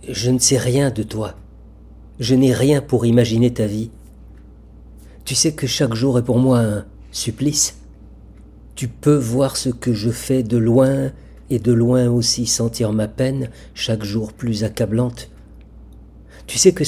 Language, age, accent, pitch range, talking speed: French, 50-69, French, 100-125 Hz, 165 wpm